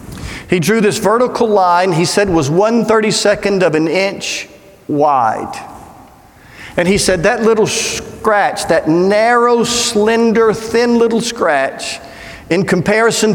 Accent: American